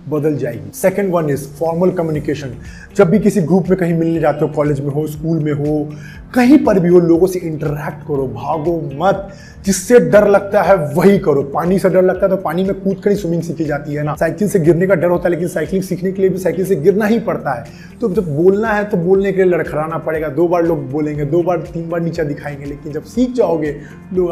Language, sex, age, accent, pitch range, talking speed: Hindi, male, 20-39, native, 150-185 Hz, 240 wpm